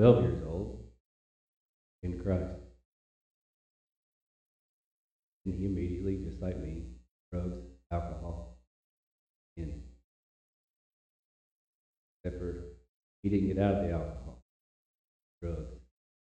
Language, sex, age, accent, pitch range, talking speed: English, male, 50-69, American, 85-95 Hz, 80 wpm